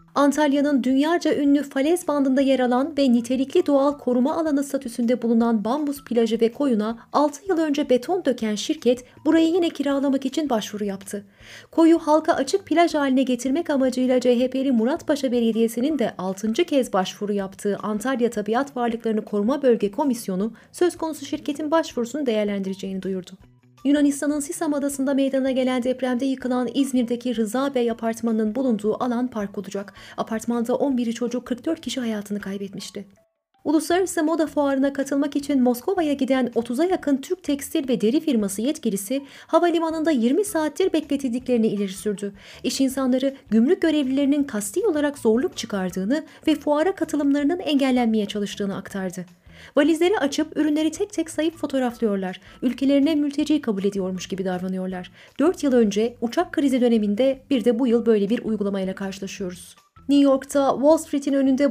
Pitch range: 225-290 Hz